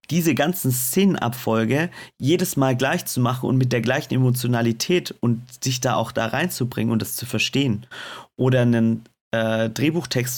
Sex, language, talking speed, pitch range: male, German, 155 wpm, 115-130 Hz